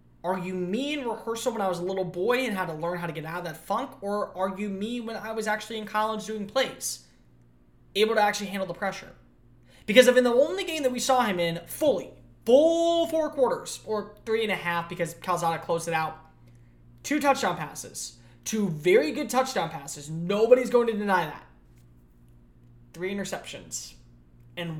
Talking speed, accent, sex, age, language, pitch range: 195 wpm, American, male, 20-39, English, 145-220 Hz